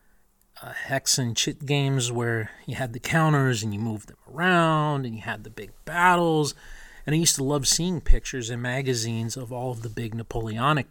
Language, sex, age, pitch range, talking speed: English, male, 40-59, 115-150 Hz, 200 wpm